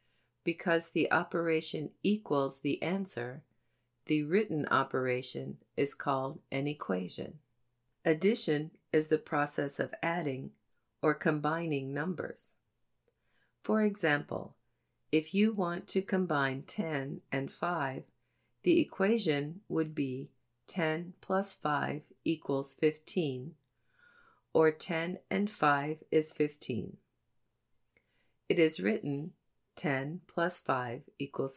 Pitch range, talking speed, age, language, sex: 135-175 Hz, 105 wpm, 50-69, English, female